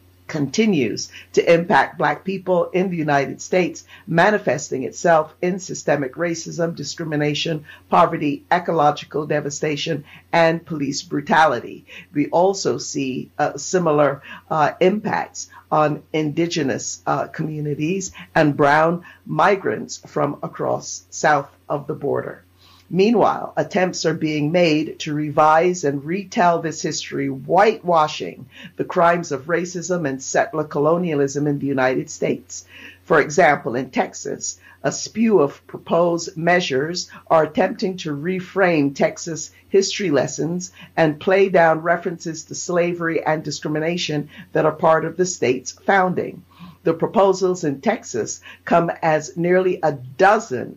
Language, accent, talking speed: English, American, 125 wpm